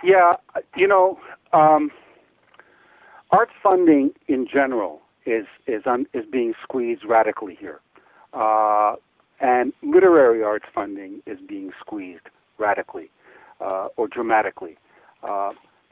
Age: 60-79